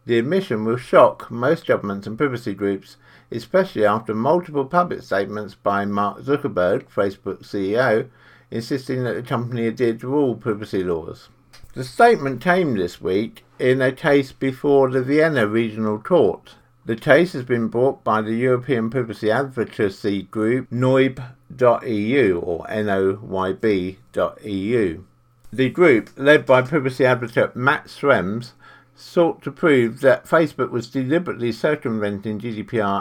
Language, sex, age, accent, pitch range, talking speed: English, male, 50-69, British, 105-135 Hz, 130 wpm